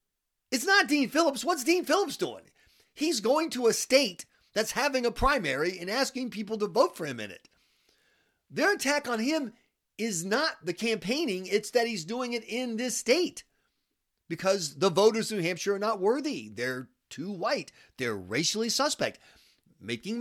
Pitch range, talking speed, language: 160-240 Hz, 170 wpm, English